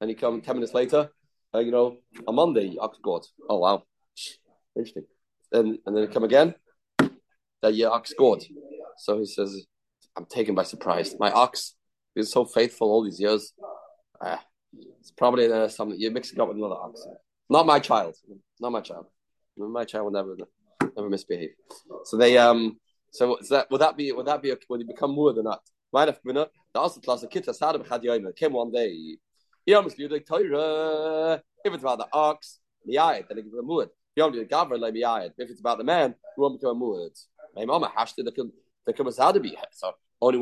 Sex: male